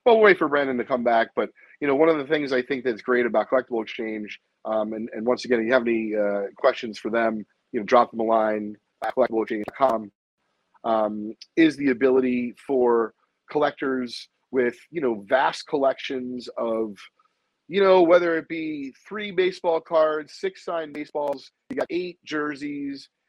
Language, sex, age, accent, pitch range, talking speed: English, male, 30-49, American, 115-155 Hz, 180 wpm